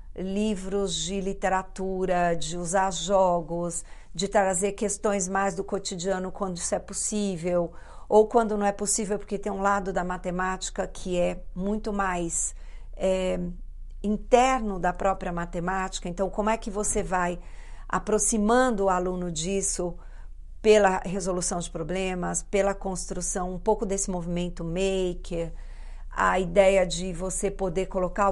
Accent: Brazilian